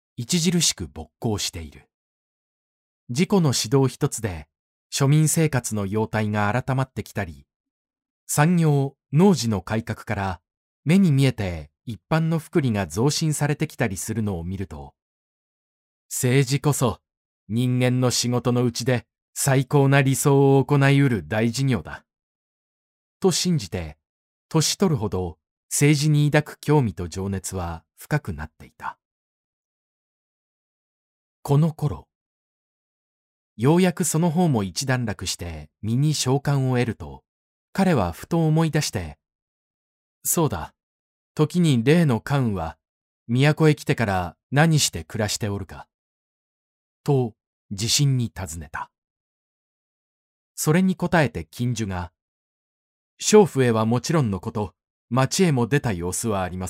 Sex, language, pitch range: male, Japanese, 95-145 Hz